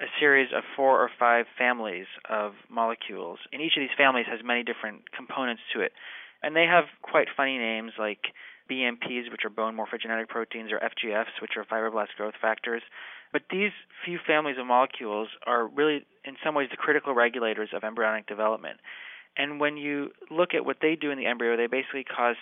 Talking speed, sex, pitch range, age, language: 190 wpm, male, 115-140 Hz, 30-49, English